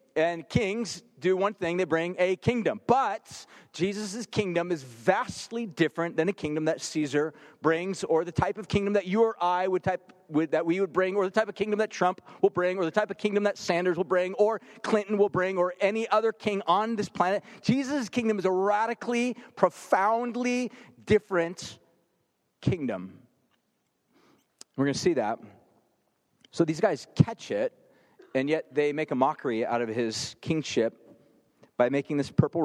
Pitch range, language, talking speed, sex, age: 130-195 Hz, English, 180 wpm, male, 40-59